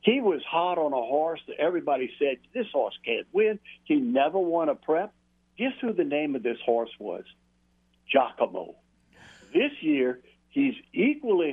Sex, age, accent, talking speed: male, 60-79, American, 160 wpm